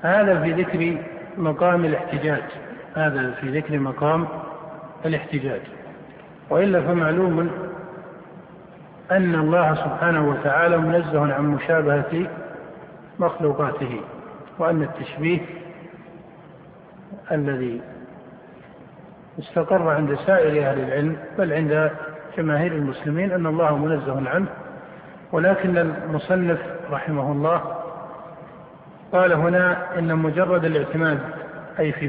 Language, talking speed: Arabic, 90 wpm